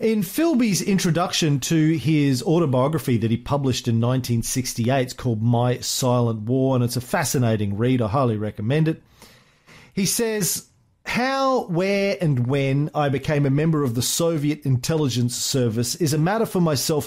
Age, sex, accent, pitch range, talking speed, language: 40-59, male, Australian, 125-170 Hz, 160 wpm, English